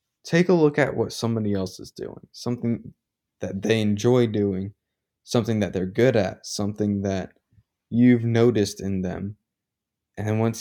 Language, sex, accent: English, male, American